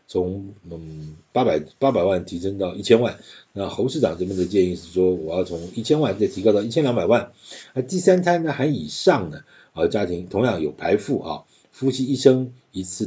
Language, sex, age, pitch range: Chinese, male, 50-69, 95-140 Hz